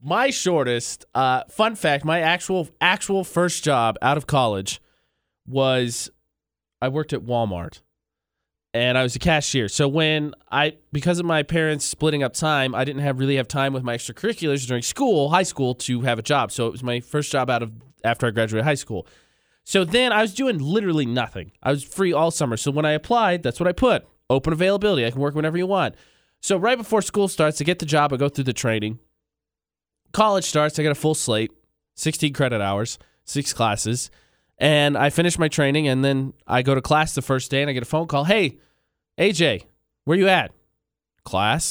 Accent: American